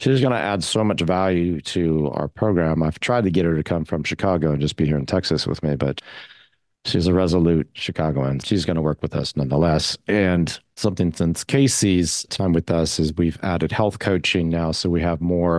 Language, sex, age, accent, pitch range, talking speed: English, male, 40-59, American, 75-90 Hz, 215 wpm